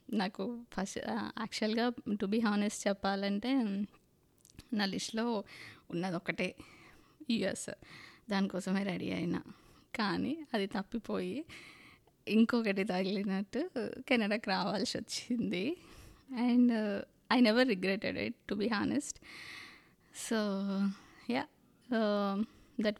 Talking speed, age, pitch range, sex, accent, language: 90 wpm, 20-39, 190-225 Hz, female, native, Telugu